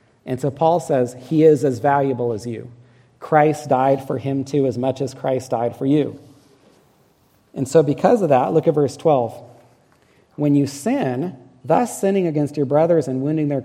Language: English